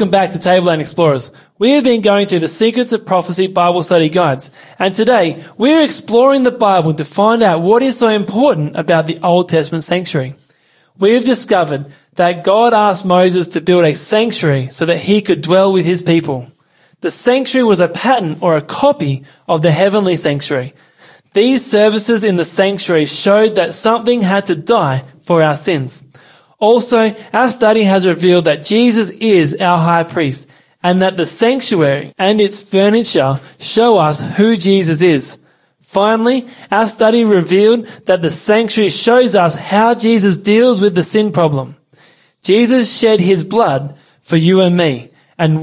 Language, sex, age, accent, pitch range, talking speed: English, male, 20-39, Australian, 160-220 Hz, 170 wpm